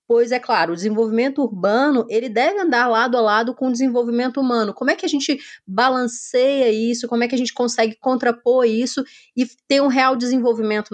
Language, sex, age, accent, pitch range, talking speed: Portuguese, female, 20-39, Brazilian, 220-260 Hz, 200 wpm